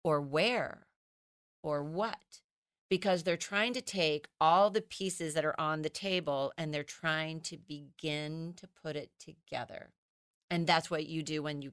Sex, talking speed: female, 170 wpm